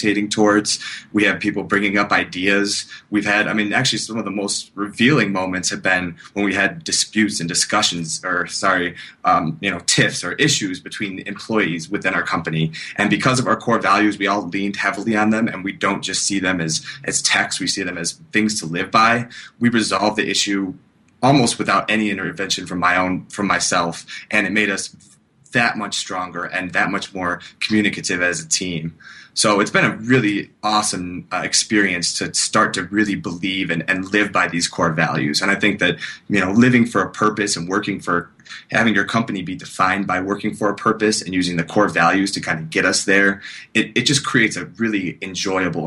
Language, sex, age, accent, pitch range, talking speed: English, male, 20-39, American, 90-105 Hz, 205 wpm